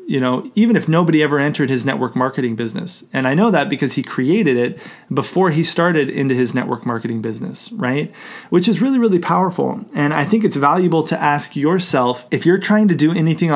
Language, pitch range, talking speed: English, 135-175 Hz, 210 wpm